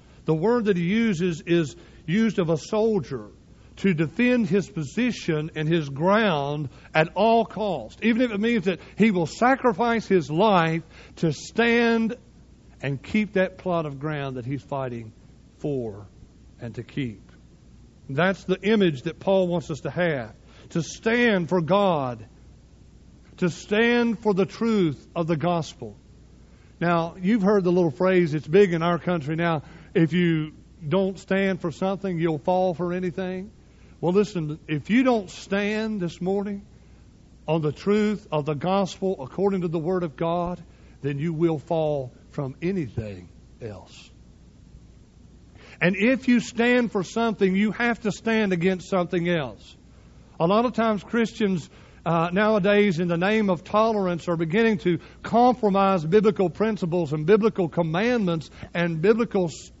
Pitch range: 155-205 Hz